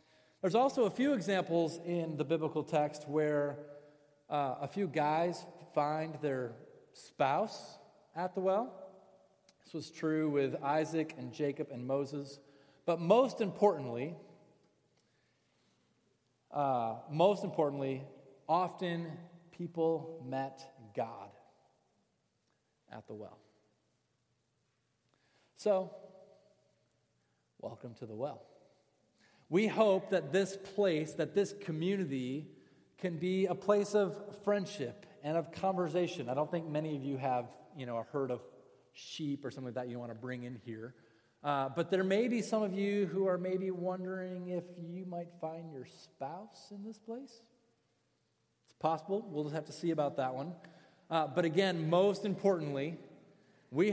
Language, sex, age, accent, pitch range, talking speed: English, male, 40-59, American, 140-190 Hz, 135 wpm